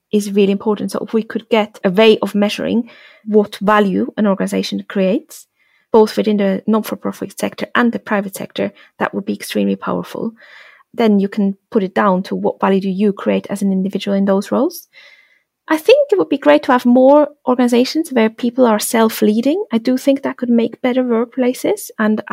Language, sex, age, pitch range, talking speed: English, female, 30-49, 200-245 Hz, 200 wpm